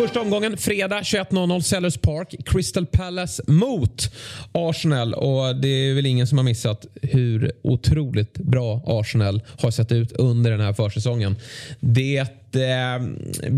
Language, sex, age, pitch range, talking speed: Swedish, male, 30-49, 110-140 Hz, 135 wpm